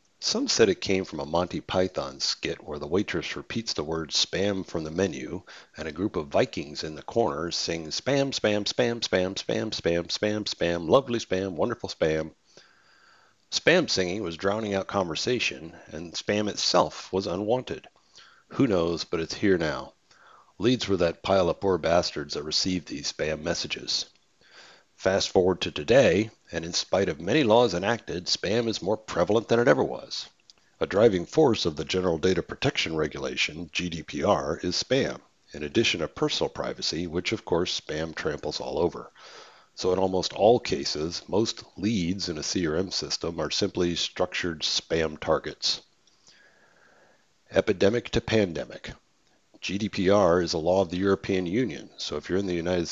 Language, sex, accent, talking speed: English, male, American, 165 wpm